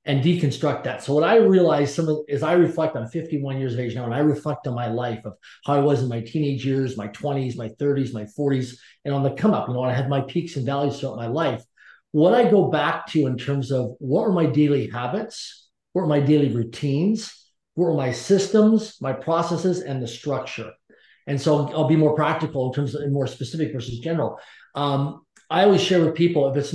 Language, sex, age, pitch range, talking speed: English, male, 40-59, 140-175 Hz, 225 wpm